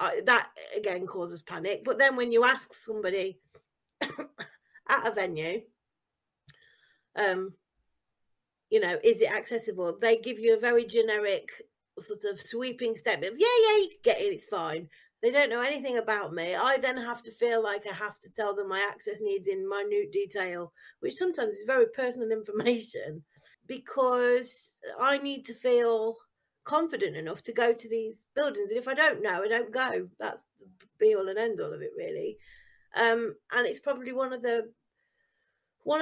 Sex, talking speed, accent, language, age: female, 175 wpm, British, English, 30-49